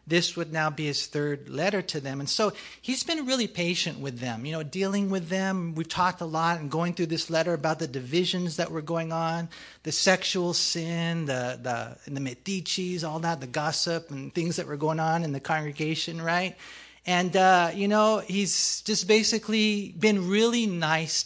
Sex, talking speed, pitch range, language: male, 195 wpm, 160-195 Hz, English